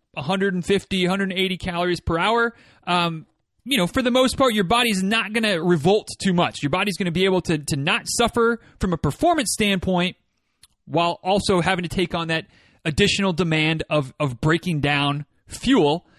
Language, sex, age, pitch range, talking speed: English, male, 30-49, 165-220 Hz, 170 wpm